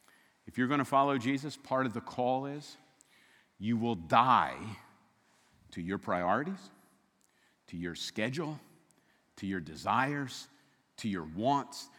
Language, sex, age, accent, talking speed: English, male, 50-69, American, 130 wpm